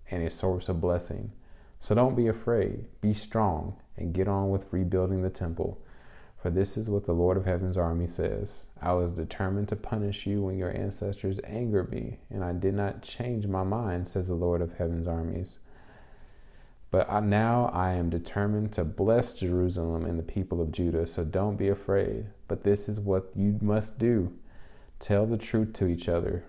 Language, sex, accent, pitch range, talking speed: English, male, American, 85-105 Hz, 190 wpm